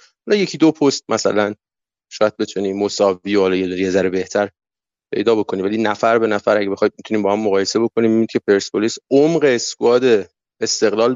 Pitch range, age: 105-120 Hz, 30-49